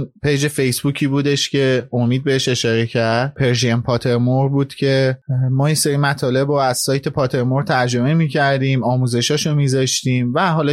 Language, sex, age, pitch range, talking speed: Persian, male, 30-49, 130-160 Hz, 145 wpm